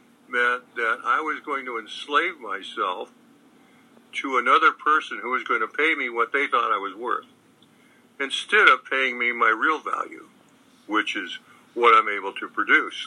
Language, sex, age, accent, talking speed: English, male, 60-79, American, 170 wpm